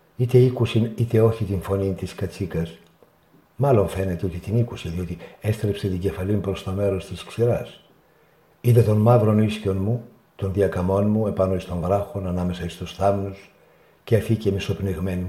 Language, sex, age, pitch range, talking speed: Greek, male, 60-79, 100-125 Hz, 160 wpm